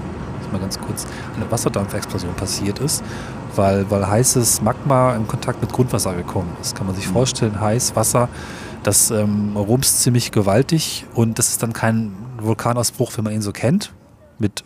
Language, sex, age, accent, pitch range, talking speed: German, male, 30-49, German, 110-125 Hz, 165 wpm